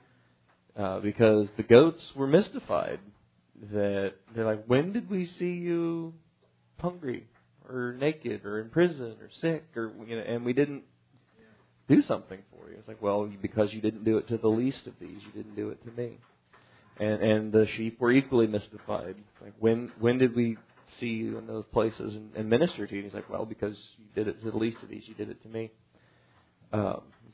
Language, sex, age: English, male, 40-59